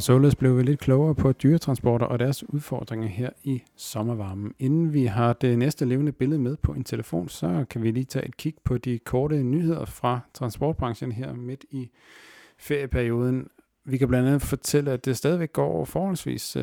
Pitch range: 115-140 Hz